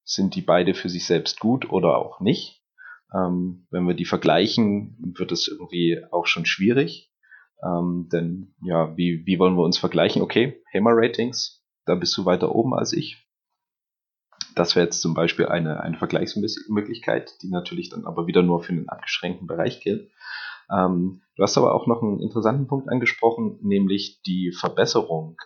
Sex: male